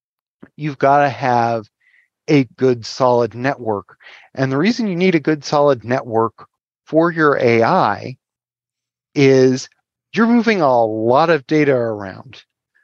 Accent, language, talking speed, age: American, English, 130 wpm, 30-49